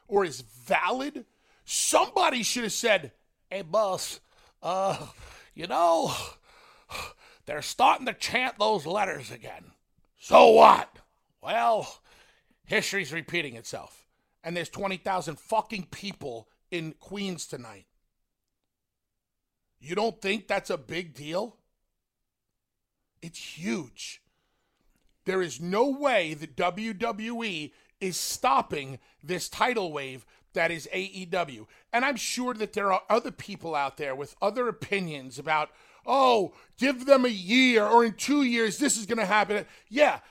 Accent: American